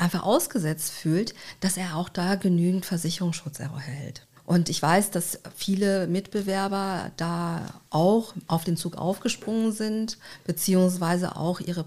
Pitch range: 165-210 Hz